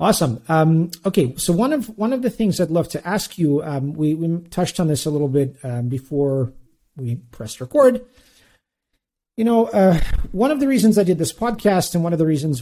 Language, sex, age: English, male, 40-59